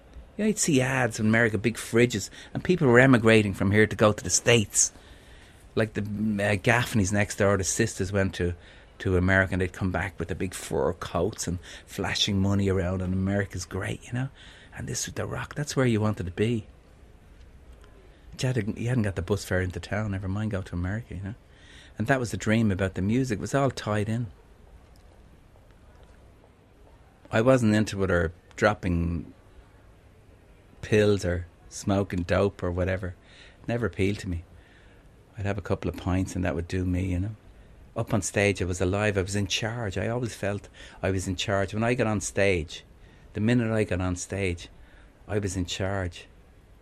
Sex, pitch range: male, 90-105 Hz